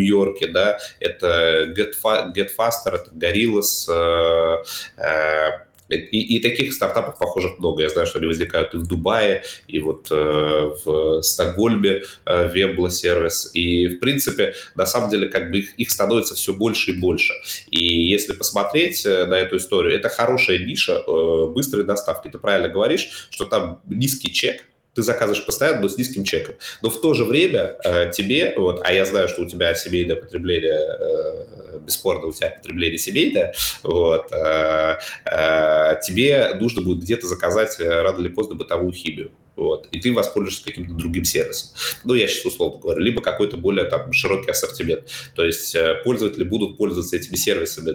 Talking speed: 165 wpm